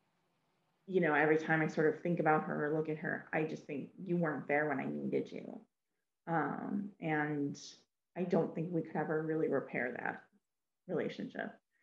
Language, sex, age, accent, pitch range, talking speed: English, female, 30-49, American, 155-190 Hz, 185 wpm